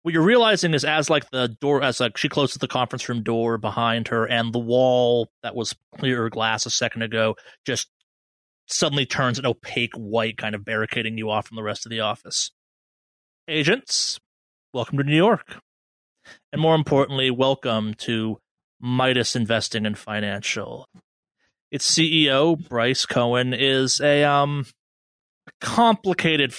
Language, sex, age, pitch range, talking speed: English, male, 30-49, 110-135 Hz, 155 wpm